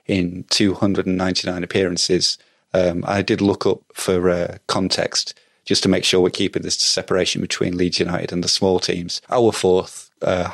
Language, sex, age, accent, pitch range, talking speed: English, male, 30-49, British, 90-105 Hz, 165 wpm